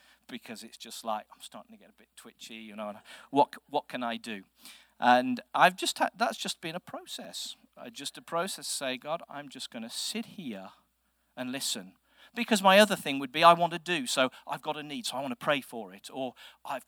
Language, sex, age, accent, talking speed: English, male, 40-59, British, 240 wpm